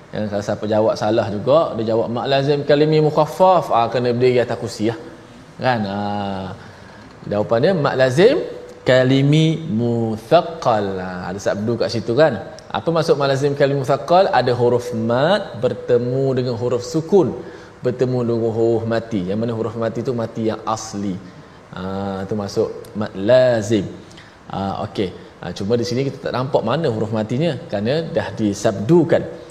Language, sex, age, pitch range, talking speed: Malayalam, male, 20-39, 115-170 Hz, 150 wpm